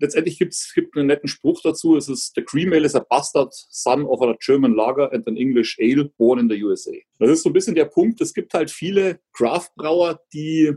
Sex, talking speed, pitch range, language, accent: male, 235 wpm, 135-210 Hz, German, German